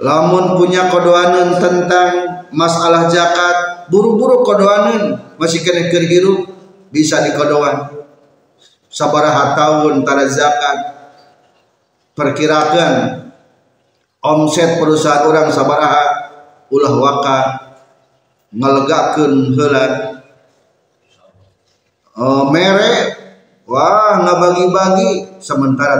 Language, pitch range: Indonesian, 135-185 Hz